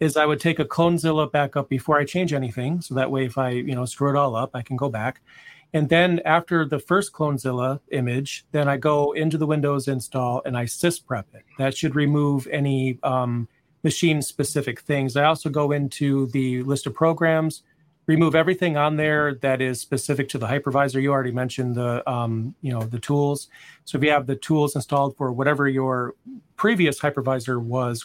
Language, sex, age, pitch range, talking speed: English, male, 40-59, 135-155 Hz, 195 wpm